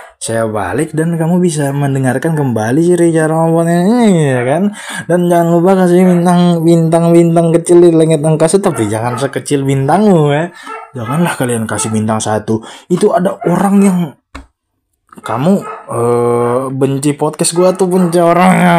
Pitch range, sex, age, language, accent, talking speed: 130-180 Hz, male, 20-39, Indonesian, native, 130 wpm